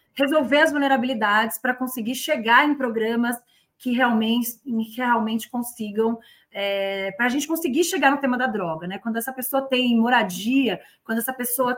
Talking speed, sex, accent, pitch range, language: 165 wpm, female, Brazilian, 220-260 Hz, Portuguese